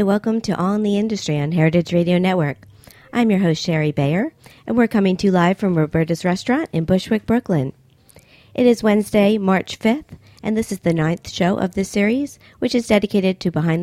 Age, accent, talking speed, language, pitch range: 50-69, American, 200 wpm, English, 155-210 Hz